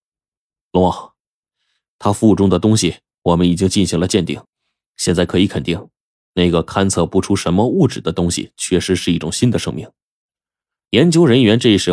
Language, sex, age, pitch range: Chinese, male, 20-39, 90-115 Hz